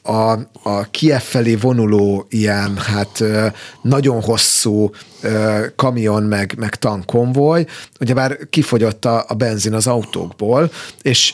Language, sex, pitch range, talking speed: Hungarian, male, 110-135 Hz, 115 wpm